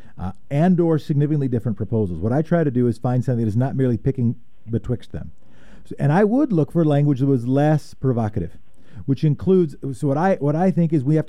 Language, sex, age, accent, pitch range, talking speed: English, male, 40-59, American, 120-165 Hz, 220 wpm